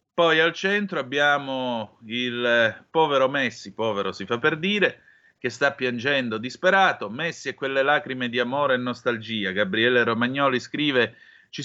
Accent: native